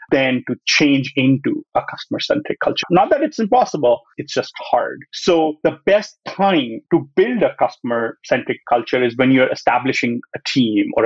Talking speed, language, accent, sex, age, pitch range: 165 wpm, English, Indian, male, 30-49, 130-180 Hz